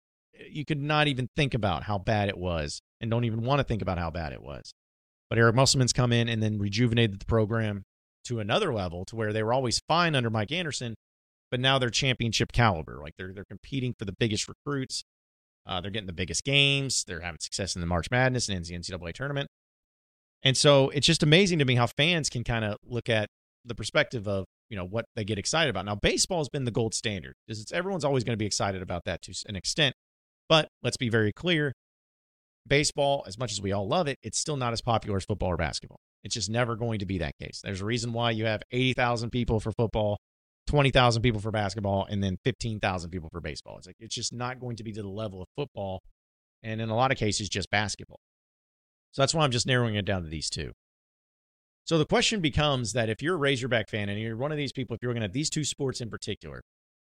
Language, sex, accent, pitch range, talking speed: English, male, American, 95-130 Hz, 235 wpm